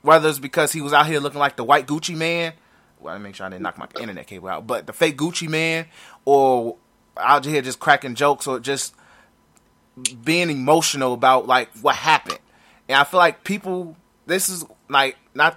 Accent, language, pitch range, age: American, English, 135-180 Hz, 20-39